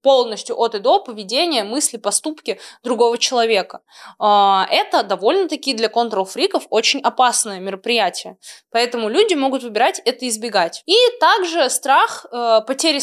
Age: 20-39